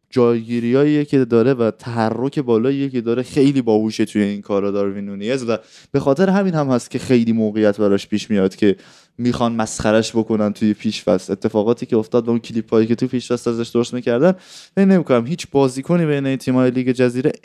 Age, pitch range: 20-39, 110-135 Hz